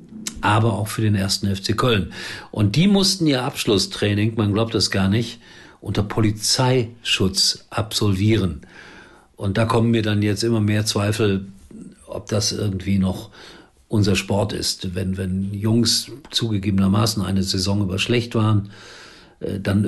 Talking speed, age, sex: 140 wpm, 50-69, male